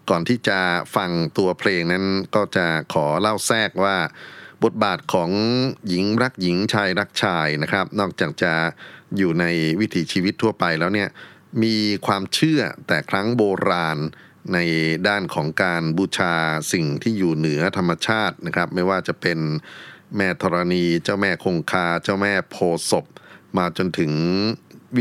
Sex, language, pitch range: male, Thai, 85-105 Hz